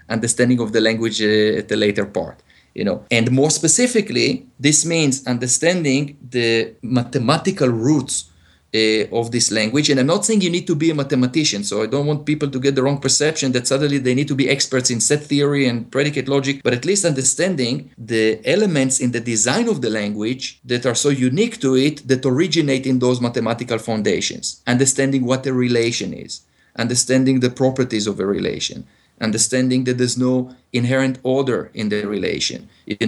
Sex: male